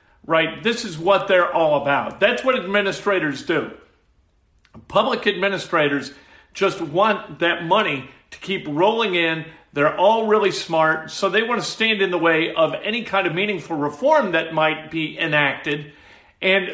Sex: male